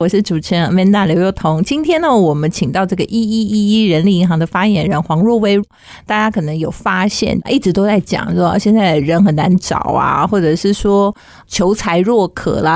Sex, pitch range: female, 170-210 Hz